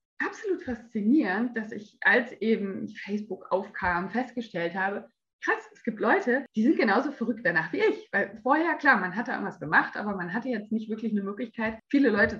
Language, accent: German, German